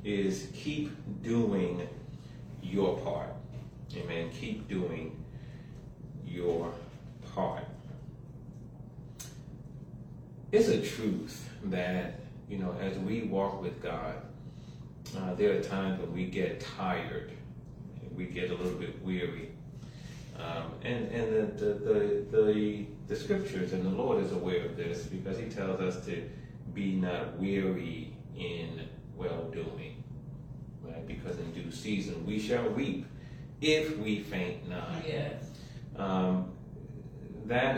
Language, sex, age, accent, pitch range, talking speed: English, male, 30-49, American, 90-140 Hz, 120 wpm